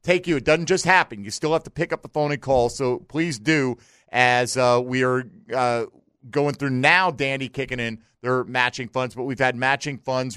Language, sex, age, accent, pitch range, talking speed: English, male, 40-59, American, 120-155 Hz, 220 wpm